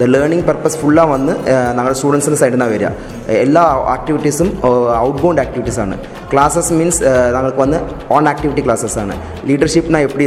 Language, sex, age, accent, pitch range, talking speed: Tamil, male, 20-39, native, 125-150 Hz, 140 wpm